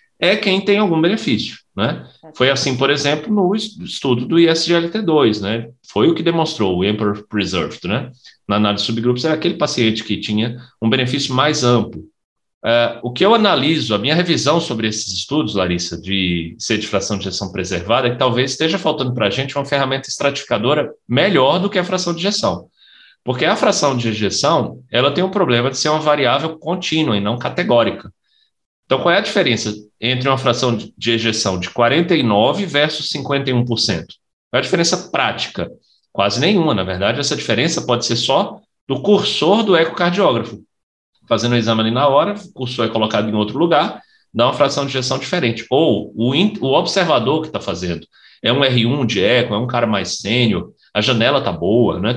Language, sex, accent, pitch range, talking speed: Portuguese, male, Brazilian, 115-165 Hz, 185 wpm